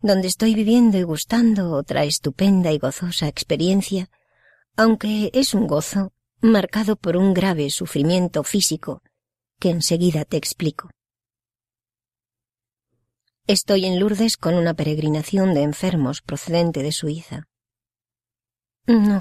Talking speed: 110 wpm